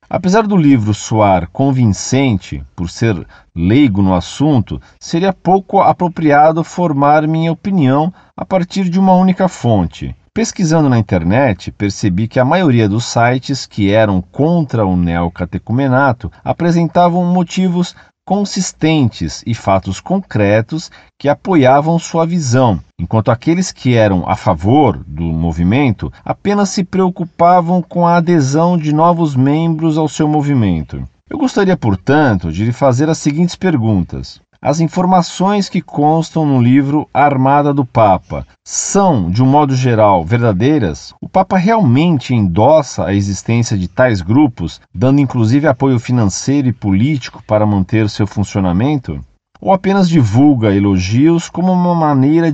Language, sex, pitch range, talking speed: Portuguese, male, 105-165 Hz, 130 wpm